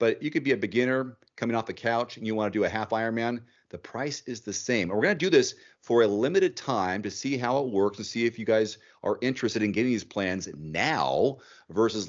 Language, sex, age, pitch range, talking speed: English, male, 40-59, 100-120 Hz, 250 wpm